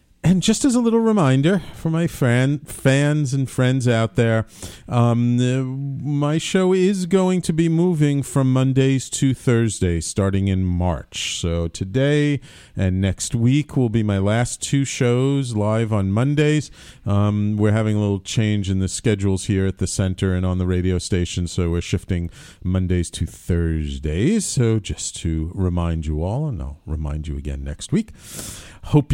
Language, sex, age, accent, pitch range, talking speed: English, male, 40-59, American, 95-140 Hz, 165 wpm